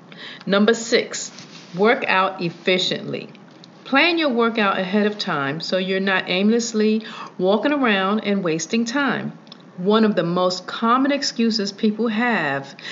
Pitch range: 180-235 Hz